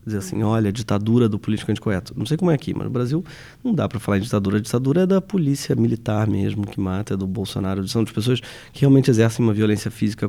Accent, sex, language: Brazilian, male, Portuguese